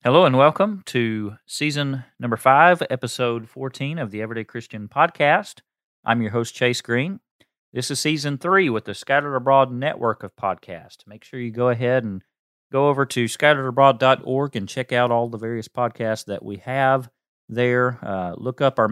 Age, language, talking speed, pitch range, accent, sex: 40-59, English, 175 wpm, 105-135 Hz, American, male